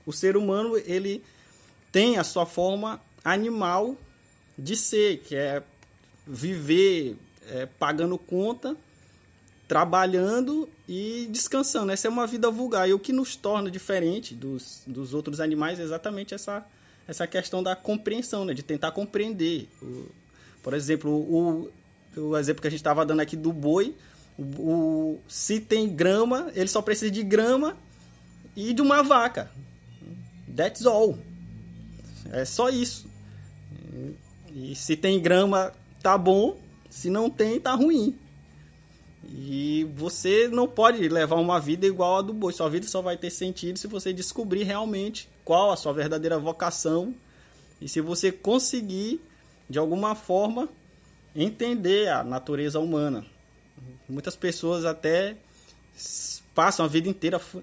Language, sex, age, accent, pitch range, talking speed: Portuguese, male, 20-39, Brazilian, 155-210 Hz, 135 wpm